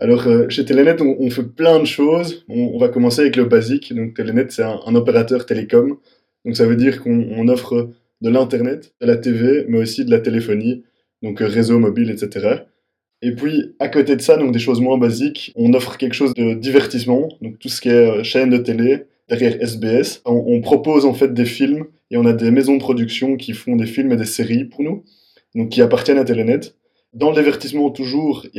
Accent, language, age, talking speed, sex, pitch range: French, French, 20-39, 210 wpm, male, 120-135 Hz